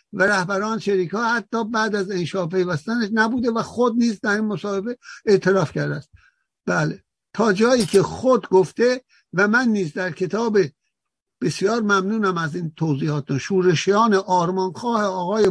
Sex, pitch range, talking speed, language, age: male, 150-210 Hz, 145 wpm, Persian, 60-79